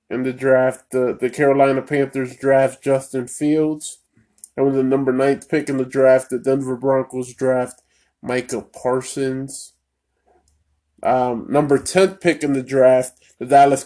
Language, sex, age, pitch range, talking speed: English, male, 20-39, 125-140 Hz, 145 wpm